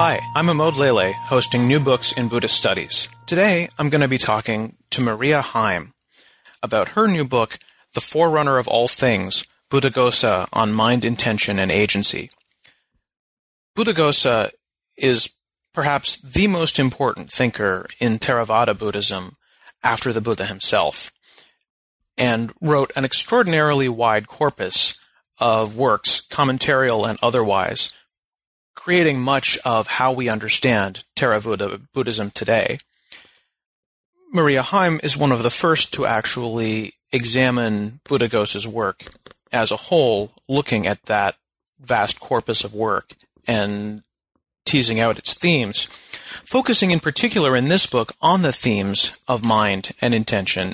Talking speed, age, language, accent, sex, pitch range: 130 wpm, 30-49, English, American, male, 110-150 Hz